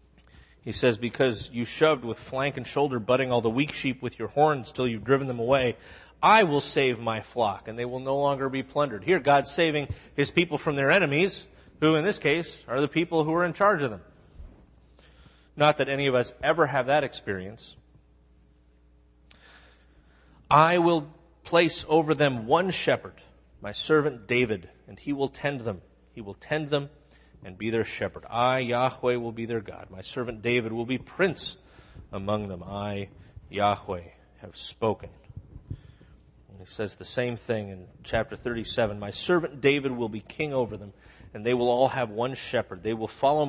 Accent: American